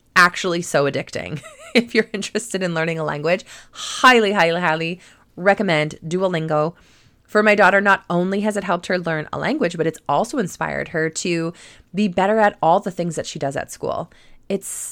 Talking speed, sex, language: 180 wpm, female, English